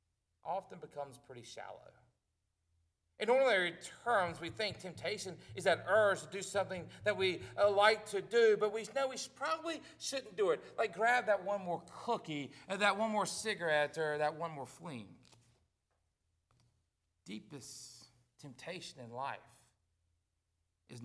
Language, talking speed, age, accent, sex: English, 145 wpm, 50-69, American, male